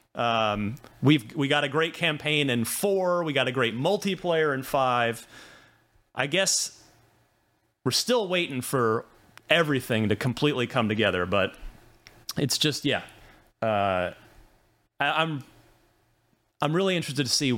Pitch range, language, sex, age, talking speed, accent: 115-165 Hz, English, male, 30-49, 130 wpm, American